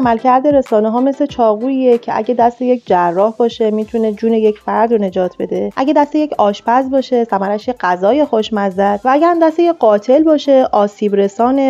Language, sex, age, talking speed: Persian, female, 30-49, 180 wpm